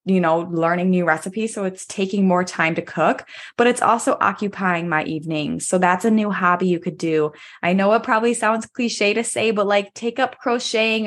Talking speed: 210 wpm